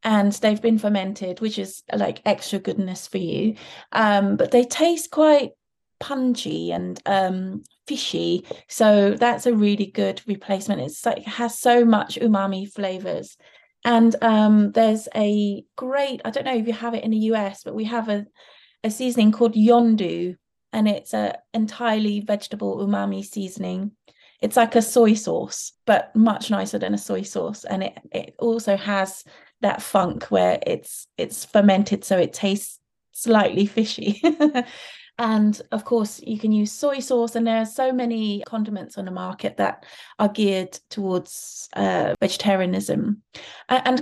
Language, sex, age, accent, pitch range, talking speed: English, female, 30-49, British, 200-235 Hz, 160 wpm